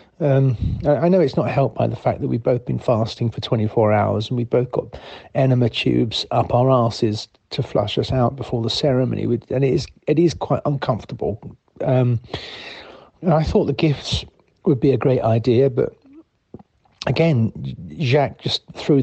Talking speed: 175 wpm